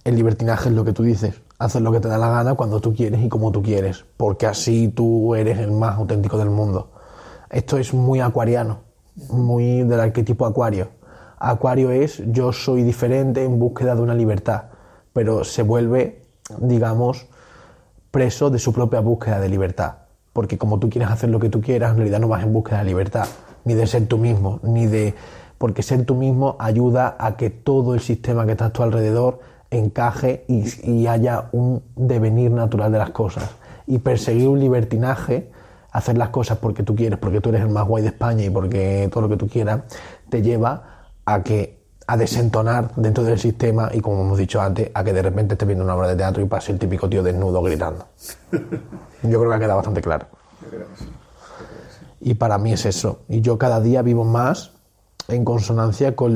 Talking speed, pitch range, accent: 195 wpm, 105-120 Hz, Spanish